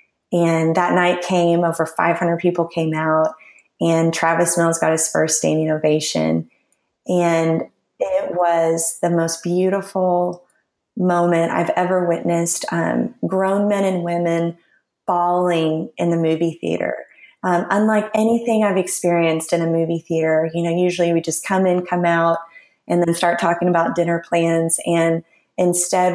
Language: English